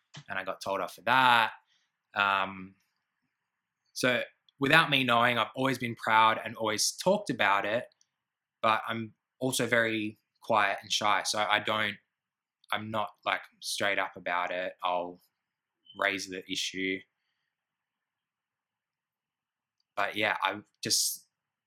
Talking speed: 125 wpm